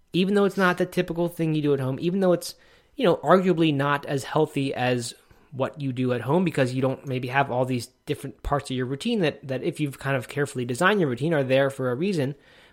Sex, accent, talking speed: male, American, 250 wpm